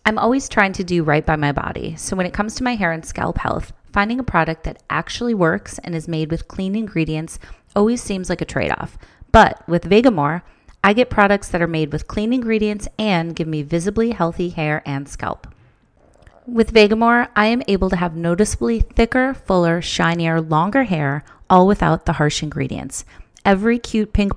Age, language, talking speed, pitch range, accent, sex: 30-49, English, 190 wpm, 160-200 Hz, American, female